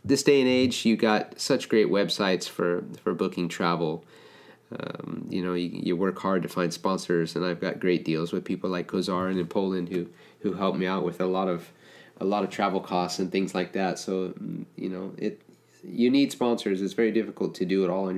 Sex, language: male, English